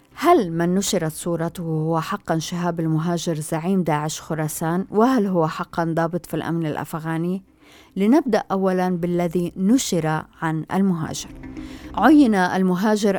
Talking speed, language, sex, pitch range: 120 wpm, Arabic, female, 170-215 Hz